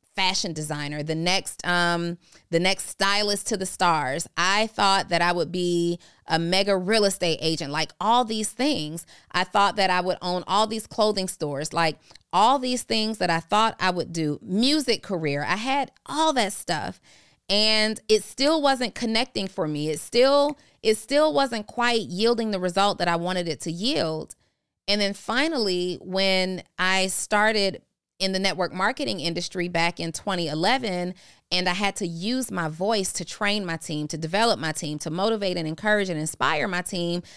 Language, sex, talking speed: English, female, 180 wpm